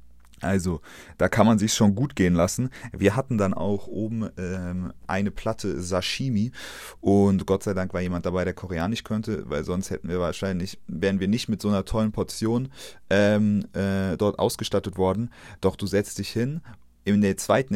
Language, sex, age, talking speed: German, male, 30-49, 185 wpm